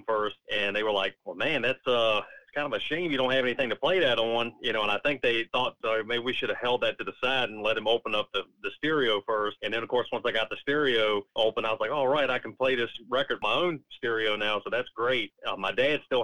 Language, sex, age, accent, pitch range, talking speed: English, male, 30-49, American, 100-115 Hz, 290 wpm